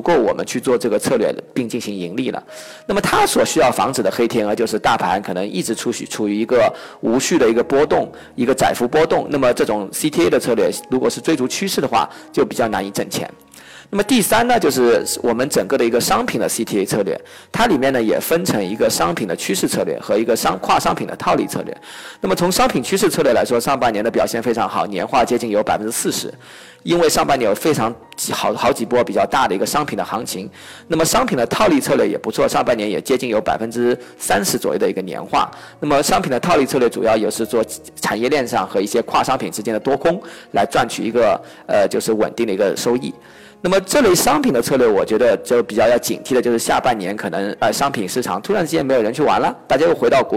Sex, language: male, Chinese